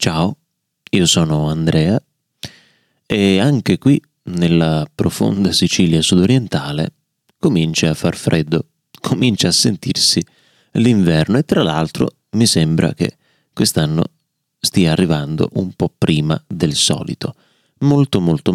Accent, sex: native, male